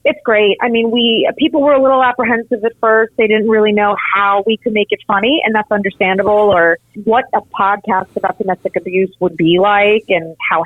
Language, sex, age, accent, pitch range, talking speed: English, female, 30-49, American, 170-215 Hz, 210 wpm